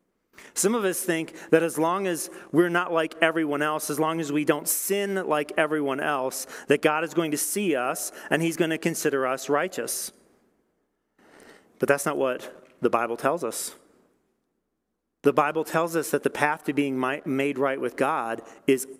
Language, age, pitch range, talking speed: English, 40-59, 125-155 Hz, 185 wpm